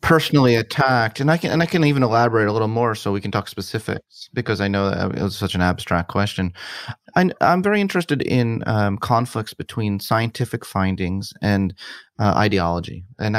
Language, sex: English, male